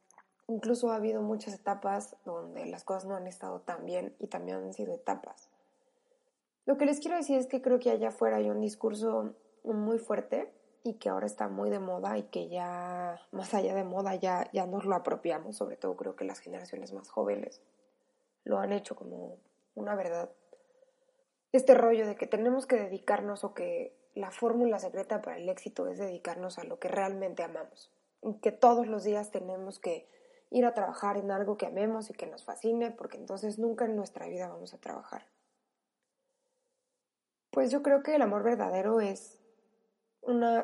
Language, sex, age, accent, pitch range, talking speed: Spanish, female, 20-39, Mexican, 185-250 Hz, 185 wpm